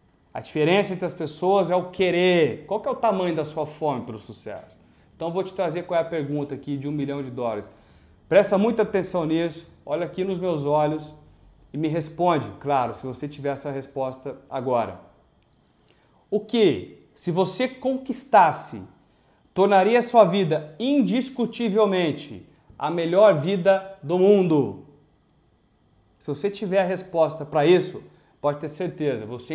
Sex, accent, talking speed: male, Brazilian, 155 wpm